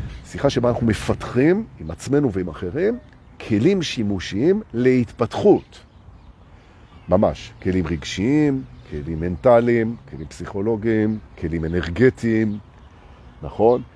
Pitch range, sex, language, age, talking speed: 90-130 Hz, male, Hebrew, 50-69, 90 wpm